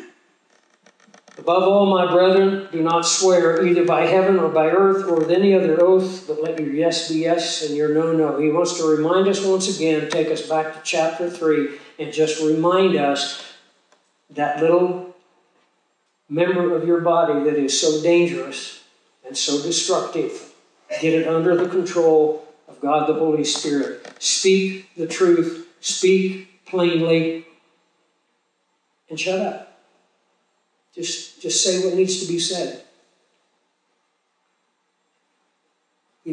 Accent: American